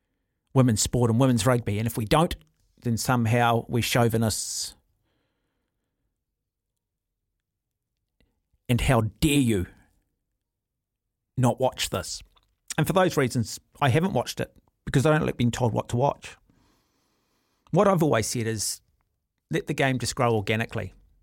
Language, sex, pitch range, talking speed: English, male, 100-130 Hz, 135 wpm